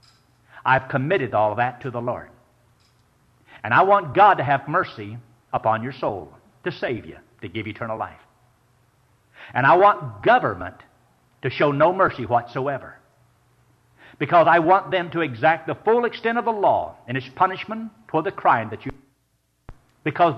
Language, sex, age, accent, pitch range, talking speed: English, male, 60-79, American, 125-180 Hz, 160 wpm